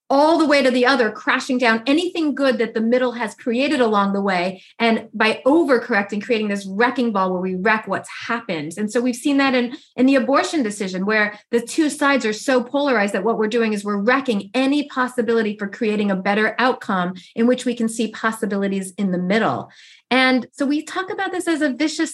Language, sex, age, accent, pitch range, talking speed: English, female, 30-49, American, 225-270 Hz, 215 wpm